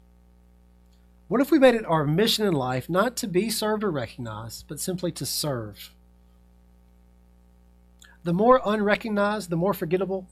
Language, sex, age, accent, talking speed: English, male, 40-59, American, 145 wpm